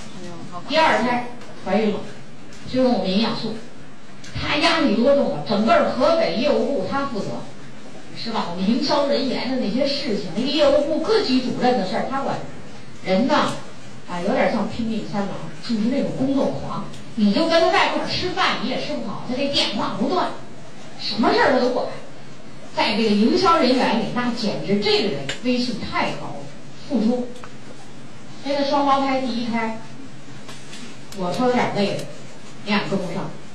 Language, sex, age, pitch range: Chinese, female, 40-59, 205-275 Hz